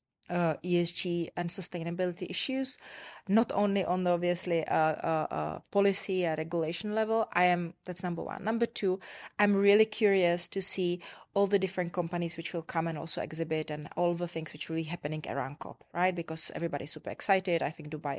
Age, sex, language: 30-49, female, English